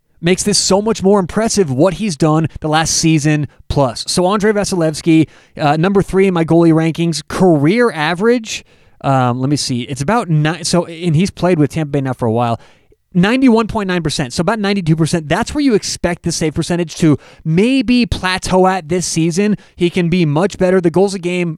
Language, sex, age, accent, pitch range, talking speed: English, male, 30-49, American, 150-195 Hz, 210 wpm